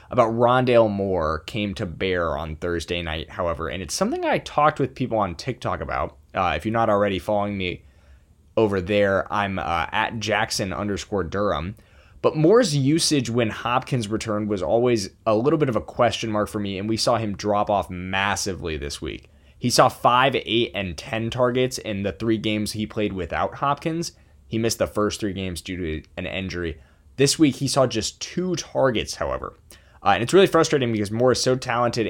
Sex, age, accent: male, 20-39, American